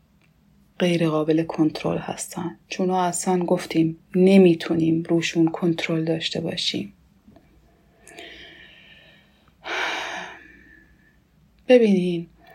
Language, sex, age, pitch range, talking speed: English, female, 30-49, 170-205 Hz, 60 wpm